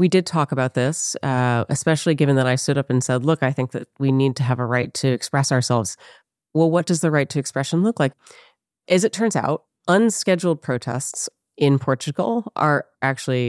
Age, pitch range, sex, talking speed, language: 30-49, 130-170 Hz, female, 205 wpm, English